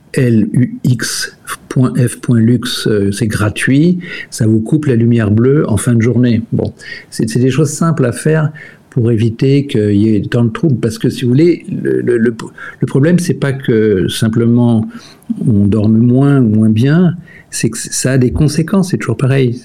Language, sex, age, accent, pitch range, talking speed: French, male, 50-69, French, 110-140 Hz, 175 wpm